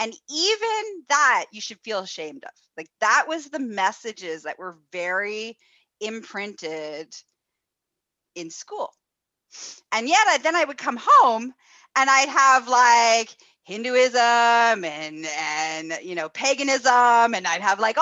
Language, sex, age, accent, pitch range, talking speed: English, female, 30-49, American, 190-290 Hz, 135 wpm